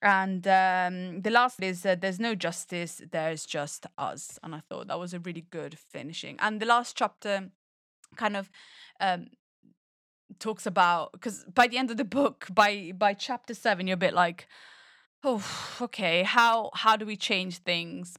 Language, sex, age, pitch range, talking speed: English, female, 20-39, 175-215 Hz, 175 wpm